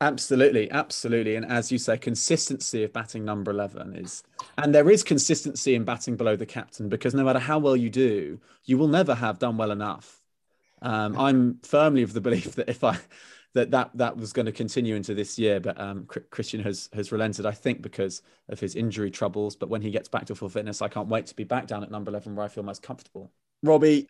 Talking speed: 225 wpm